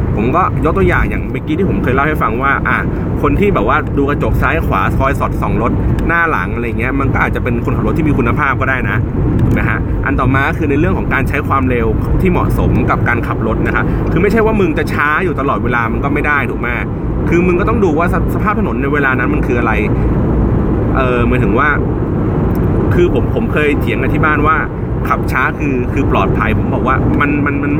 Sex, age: male, 30-49